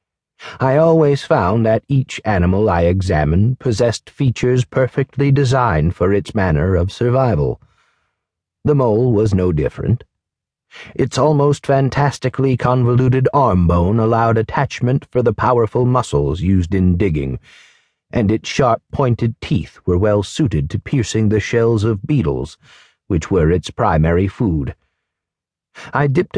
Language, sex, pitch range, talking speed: English, male, 90-130 Hz, 130 wpm